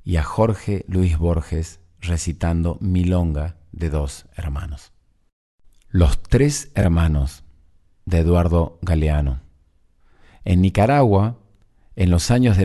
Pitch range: 80-95 Hz